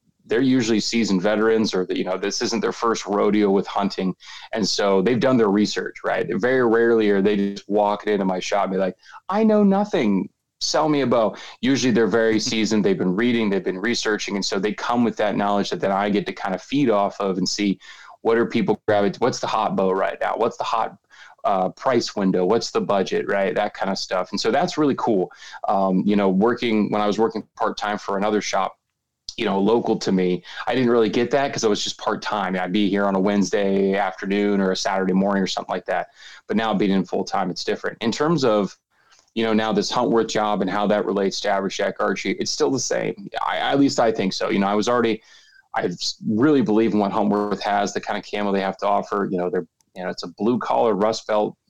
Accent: American